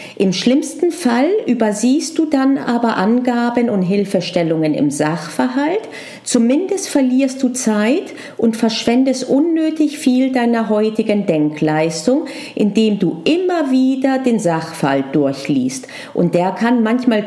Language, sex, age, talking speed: German, female, 40-59, 120 wpm